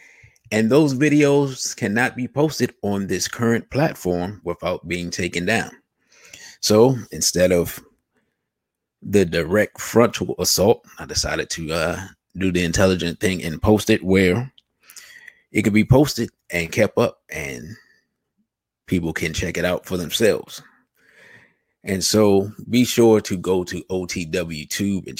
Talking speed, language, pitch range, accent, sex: 140 wpm, English, 85-105 Hz, American, male